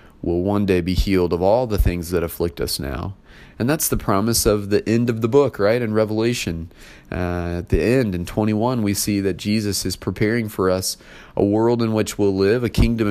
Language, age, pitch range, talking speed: English, 30-49, 85-110 Hz, 220 wpm